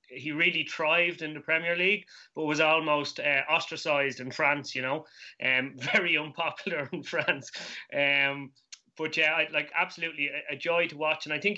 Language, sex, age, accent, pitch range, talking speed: English, male, 20-39, Irish, 140-160 Hz, 180 wpm